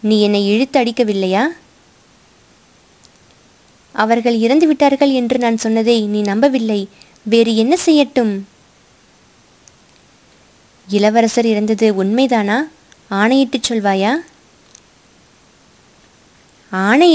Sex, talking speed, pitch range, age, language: female, 60 wpm, 205-255 Hz, 20-39, Tamil